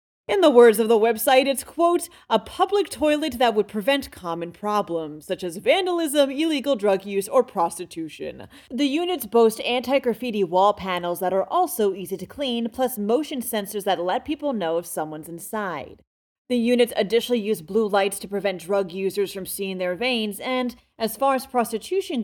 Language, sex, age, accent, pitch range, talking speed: English, female, 30-49, American, 195-270 Hz, 175 wpm